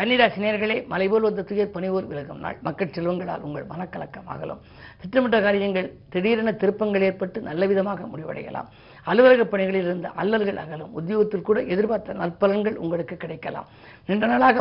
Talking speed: 125 wpm